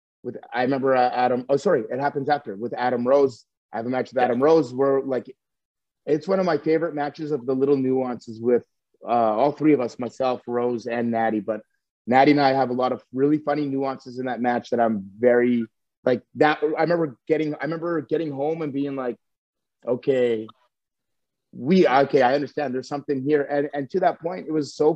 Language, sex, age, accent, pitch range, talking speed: English, male, 30-49, American, 125-150 Hz, 210 wpm